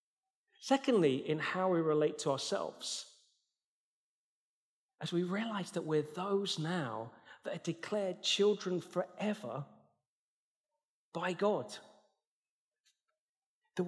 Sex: male